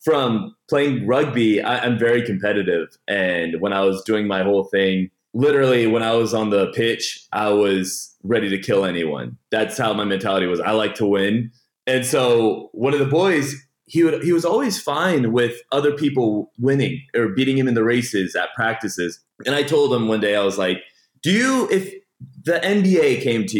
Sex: male